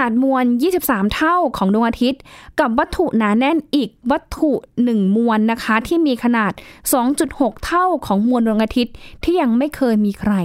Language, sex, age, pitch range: Thai, female, 10-29, 195-260 Hz